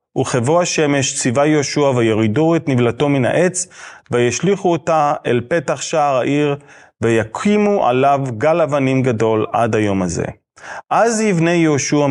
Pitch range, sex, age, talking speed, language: 115-155 Hz, male, 30-49, 130 wpm, English